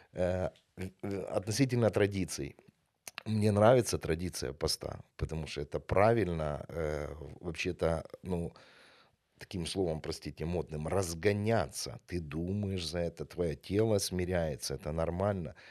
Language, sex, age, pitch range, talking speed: Ukrainian, male, 40-59, 80-110 Hz, 100 wpm